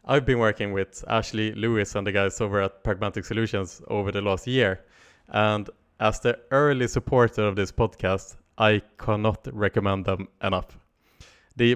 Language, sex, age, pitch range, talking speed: English, male, 20-39, 100-120 Hz, 160 wpm